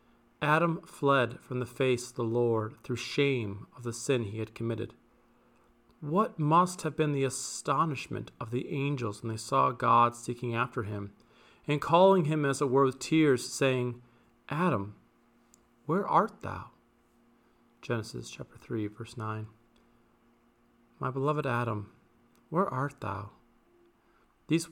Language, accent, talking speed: English, American, 140 wpm